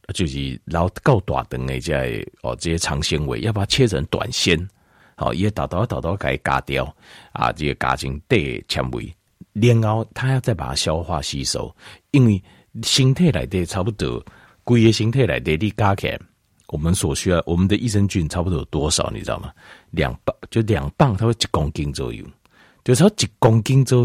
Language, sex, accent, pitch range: Chinese, male, native, 75-120 Hz